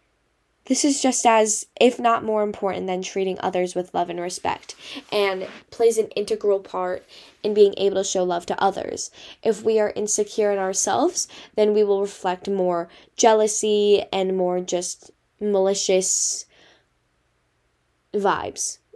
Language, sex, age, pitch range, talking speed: English, female, 10-29, 185-220 Hz, 140 wpm